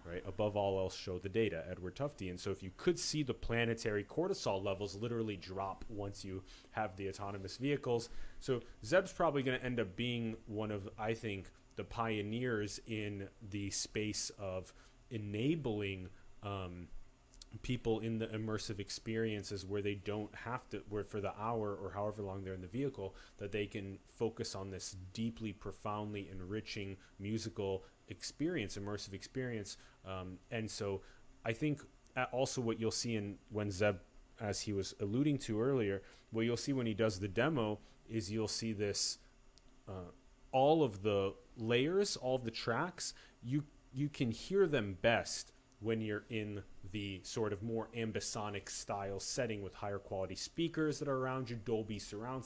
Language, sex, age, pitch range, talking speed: English, male, 30-49, 100-120 Hz, 165 wpm